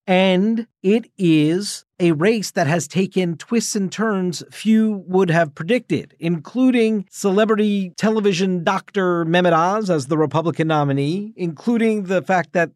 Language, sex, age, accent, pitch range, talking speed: English, male, 40-59, American, 140-190 Hz, 135 wpm